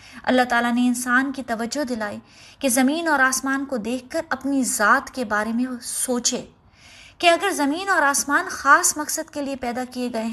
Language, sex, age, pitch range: Urdu, female, 20-39, 235-290 Hz